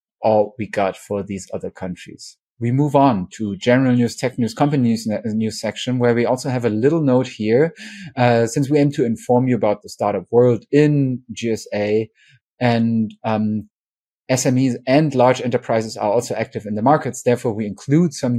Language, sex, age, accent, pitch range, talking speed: English, male, 30-49, German, 105-130 Hz, 185 wpm